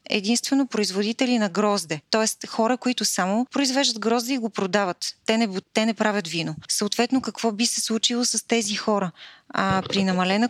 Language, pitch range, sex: Bulgarian, 185-225 Hz, female